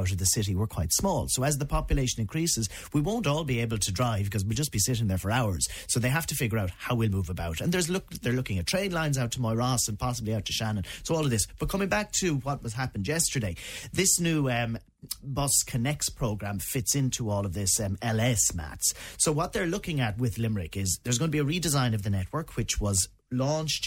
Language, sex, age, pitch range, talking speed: English, male, 30-49, 100-130 Hz, 245 wpm